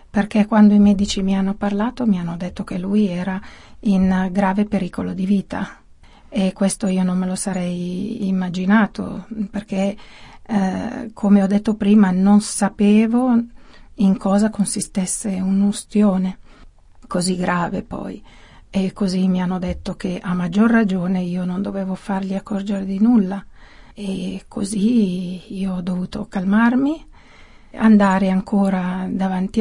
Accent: native